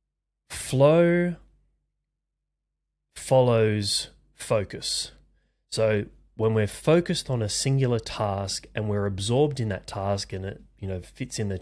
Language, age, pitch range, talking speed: English, 30-49, 95-115 Hz, 125 wpm